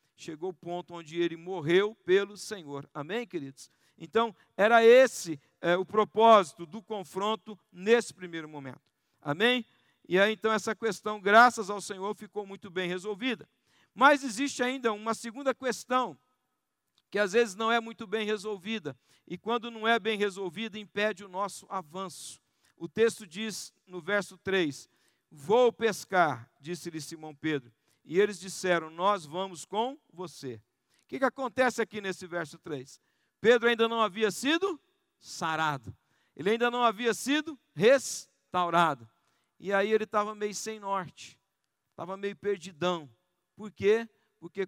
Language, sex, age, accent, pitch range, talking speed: Portuguese, male, 50-69, Brazilian, 165-220 Hz, 145 wpm